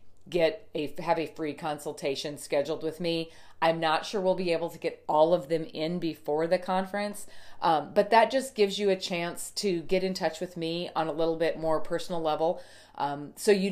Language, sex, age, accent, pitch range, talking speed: English, female, 40-59, American, 140-175 Hz, 210 wpm